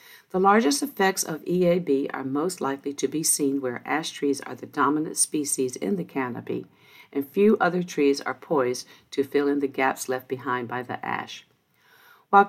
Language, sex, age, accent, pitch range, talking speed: English, female, 50-69, American, 135-170 Hz, 185 wpm